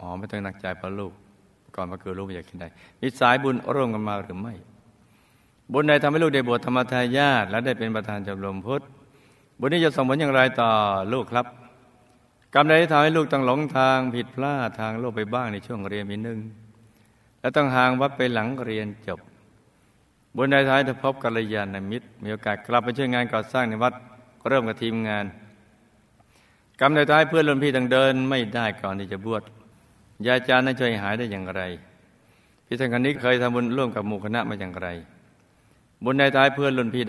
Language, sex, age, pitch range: Thai, male, 60-79, 105-130 Hz